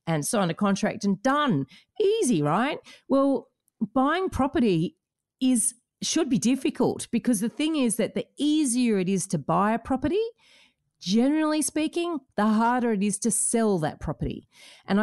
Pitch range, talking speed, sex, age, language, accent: 165-230 Hz, 155 wpm, female, 40-59, English, Australian